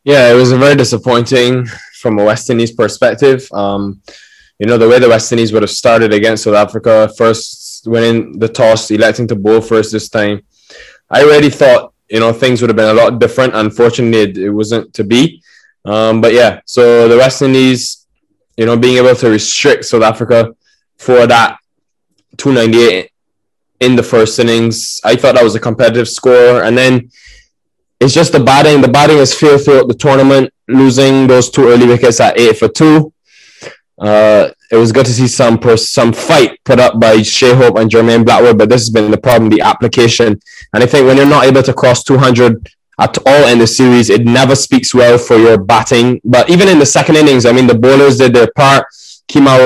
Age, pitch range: 10-29, 115-130 Hz